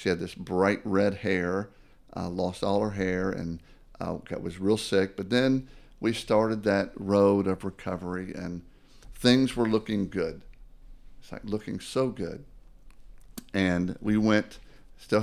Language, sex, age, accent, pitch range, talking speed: English, male, 50-69, American, 95-120 Hz, 150 wpm